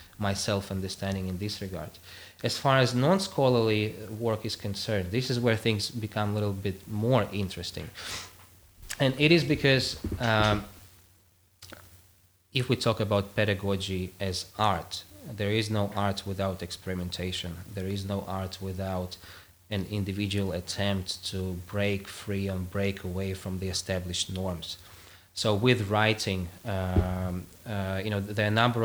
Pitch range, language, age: 95-110 Hz, English, 20-39